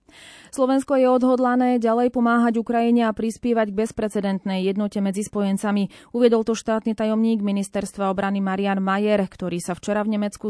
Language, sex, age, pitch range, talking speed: Slovak, female, 30-49, 190-235 Hz, 150 wpm